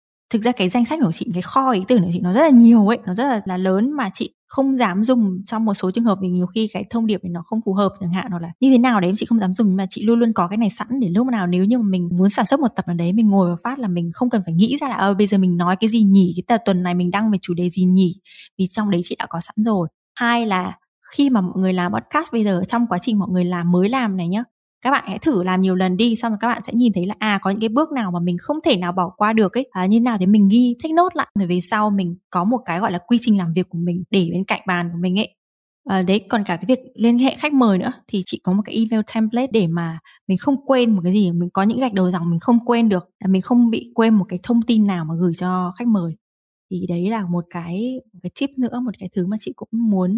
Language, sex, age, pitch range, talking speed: Vietnamese, female, 20-39, 185-235 Hz, 320 wpm